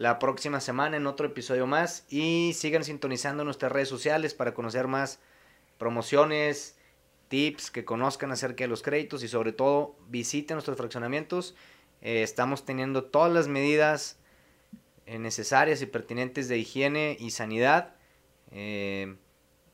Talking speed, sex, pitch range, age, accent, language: 135 wpm, male, 125-155 Hz, 30-49, Mexican, Spanish